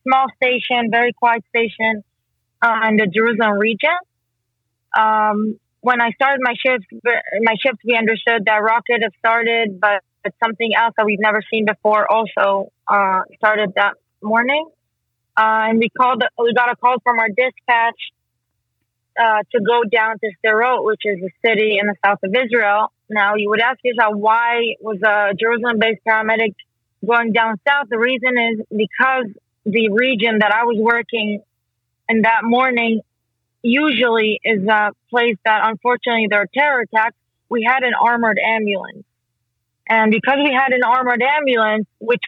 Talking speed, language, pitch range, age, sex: 160 wpm, English, 210-245 Hz, 20-39, female